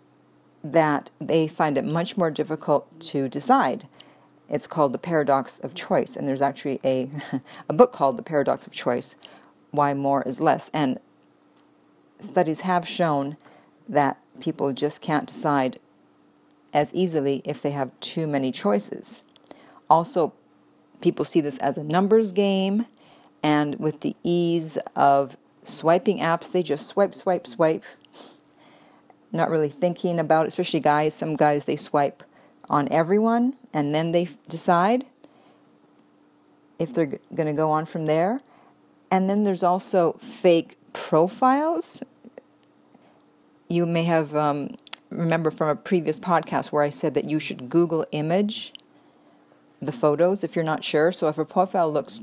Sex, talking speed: female, 145 wpm